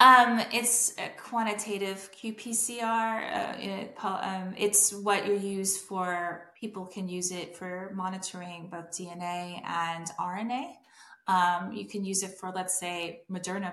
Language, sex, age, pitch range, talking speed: English, female, 30-49, 180-205 Hz, 140 wpm